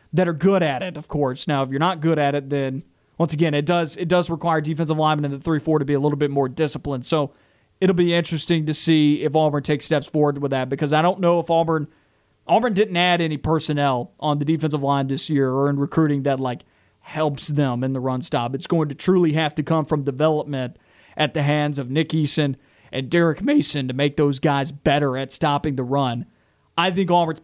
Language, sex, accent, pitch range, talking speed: English, male, American, 145-165 Hz, 230 wpm